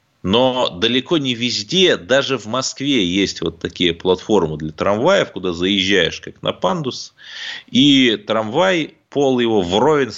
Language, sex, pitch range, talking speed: Russian, male, 95-140 Hz, 135 wpm